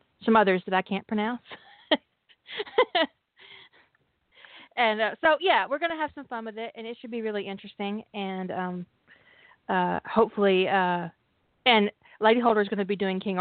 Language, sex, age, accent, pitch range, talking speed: English, female, 30-49, American, 185-235 Hz, 170 wpm